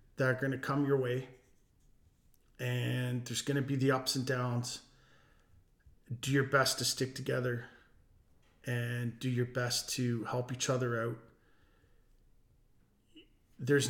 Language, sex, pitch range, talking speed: English, male, 115-135 Hz, 140 wpm